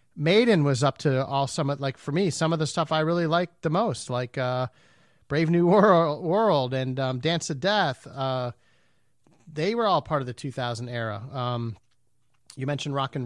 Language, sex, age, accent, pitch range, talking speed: English, male, 40-59, American, 125-165 Hz, 195 wpm